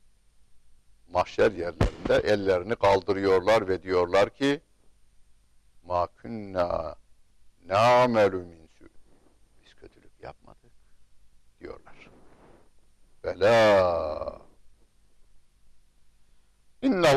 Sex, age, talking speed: male, 60-79, 60 wpm